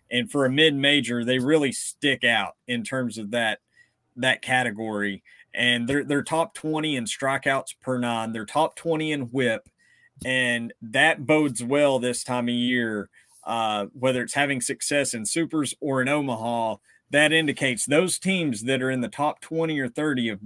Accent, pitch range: American, 120-155 Hz